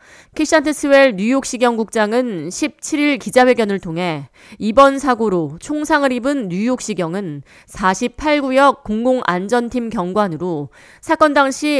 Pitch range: 185-265 Hz